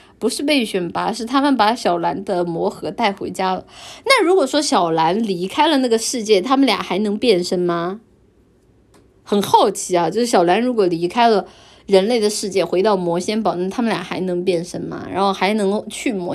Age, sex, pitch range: 20-39, female, 190-280 Hz